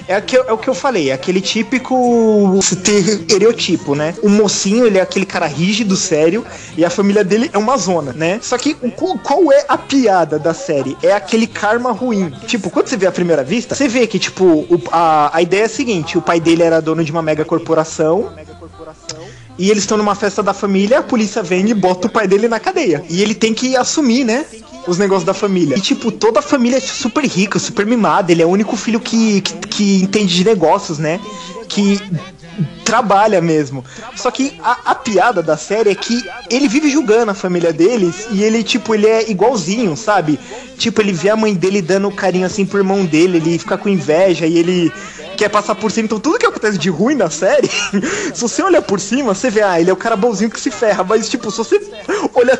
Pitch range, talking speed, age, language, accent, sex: 180-230 Hz, 220 wpm, 20-39, Portuguese, Brazilian, male